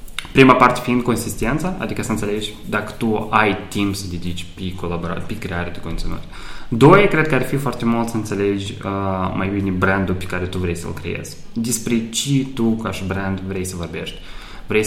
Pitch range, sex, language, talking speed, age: 95-125 Hz, male, Romanian, 190 wpm, 20-39